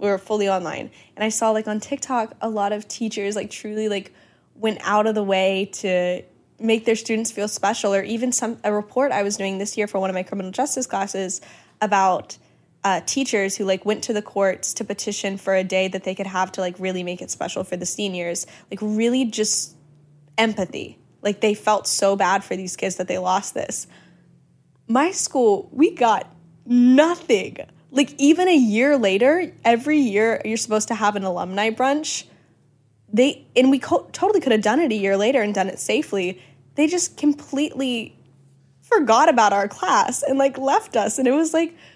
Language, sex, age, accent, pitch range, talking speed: English, female, 10-29, American, 195-255 Hz, 195 wpm